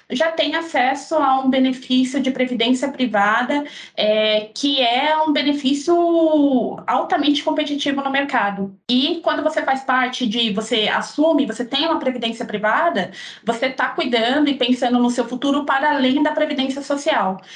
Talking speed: 150 wpm